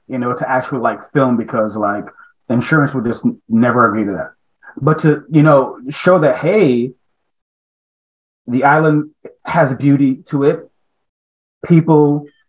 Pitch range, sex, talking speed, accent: 125-155 Hz, male, 140 wpm, American